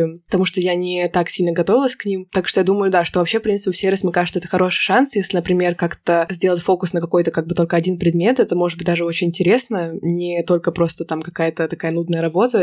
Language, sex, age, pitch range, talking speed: Russian, female, 20-39, 175-200 Hz, 240 wpm